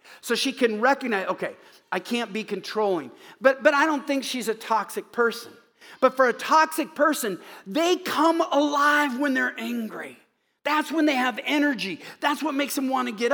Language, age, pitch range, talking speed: English, 50-69, 200-285 Hz, 185 wpm